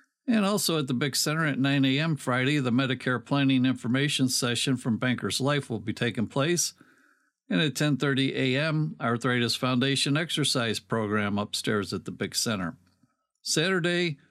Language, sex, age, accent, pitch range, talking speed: English, male, 50-69, American, 125-155 Hz, 150 wpm